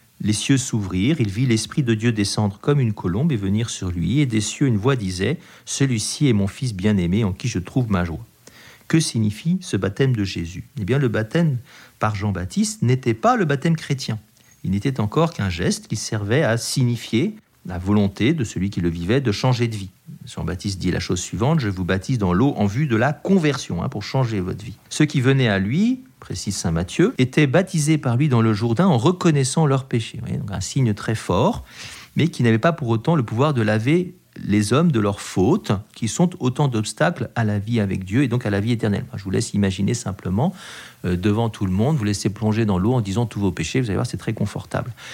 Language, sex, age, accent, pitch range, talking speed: French, male, 50-69, French, 105-155 Hz, 225 wpm